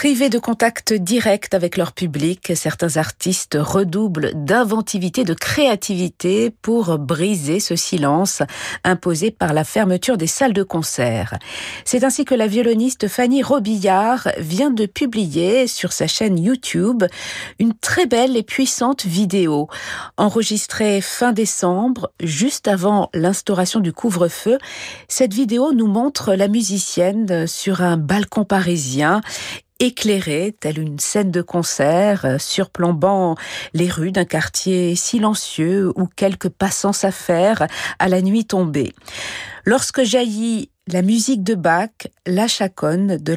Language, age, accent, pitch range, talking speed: French, 50-69, French, 170-220 Hz, 125 wpm